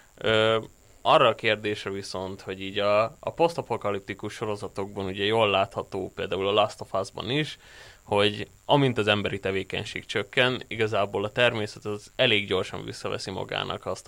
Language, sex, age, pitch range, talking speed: Hungarian, male, 20-39, 100-115 Hz, 145 wpm